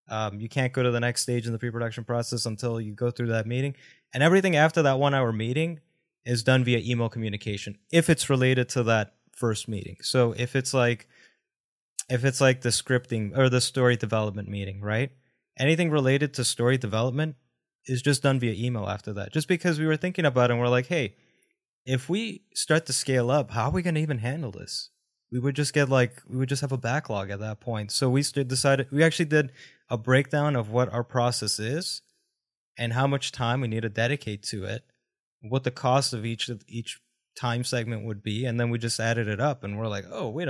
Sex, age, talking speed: male, 20-39, 220 wpm